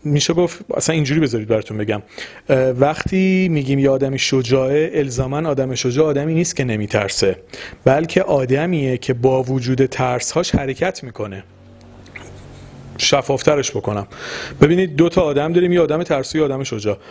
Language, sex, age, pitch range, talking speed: Persian, male, 40-59, 130-175 Hz, 135 wpm